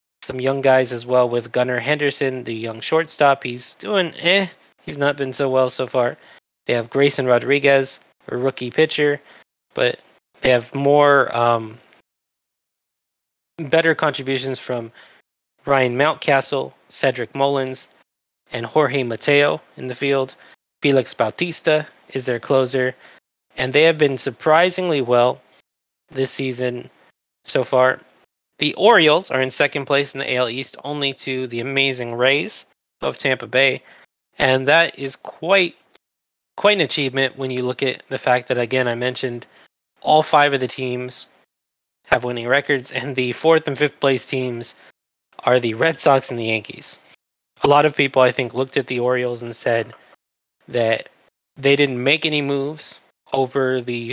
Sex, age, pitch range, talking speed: male, 20-39, 125-140 Hz, 155 wpm